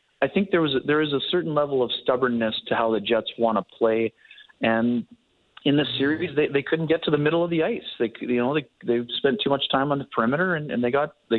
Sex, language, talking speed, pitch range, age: male, English, 255 wpm, 120-150 Hz, 30-49